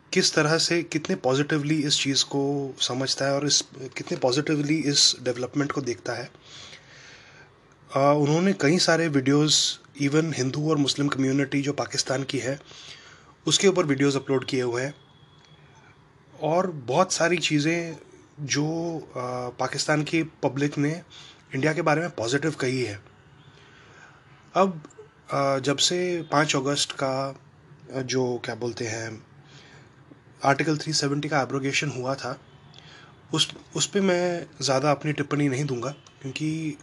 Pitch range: 135-155 Hz